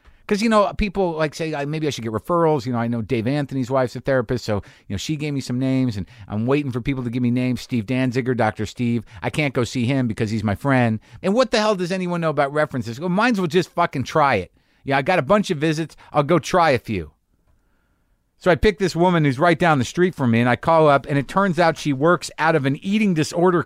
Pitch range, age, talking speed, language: 120-160 Hz, 50-69, 270 wpm, English